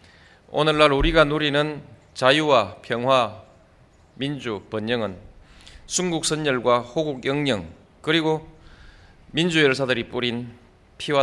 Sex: male